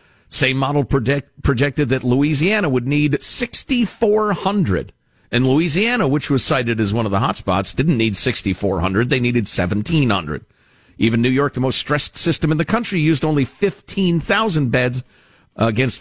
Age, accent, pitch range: 50-69, American, 120-175 Hz